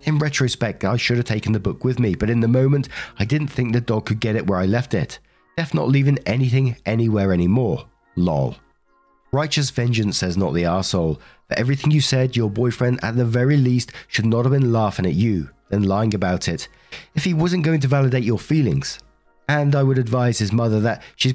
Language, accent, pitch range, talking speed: English, British, 105-135 Hz, 215 wpm